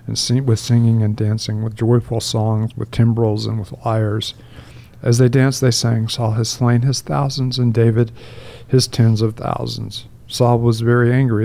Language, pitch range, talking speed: English, 115-125 Hz, 180 wpm